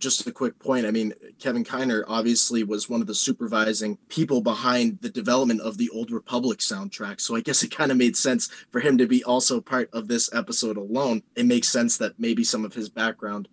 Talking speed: 220 wpm